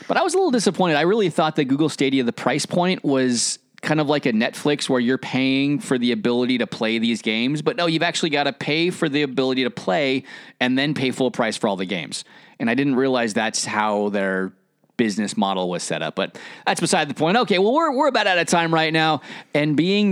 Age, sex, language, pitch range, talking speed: 30-49, male, English, 130-170 Hz, 240 wpm